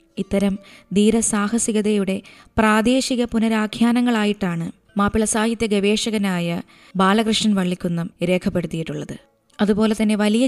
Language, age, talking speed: Malayalam, 20-39, 75 wpm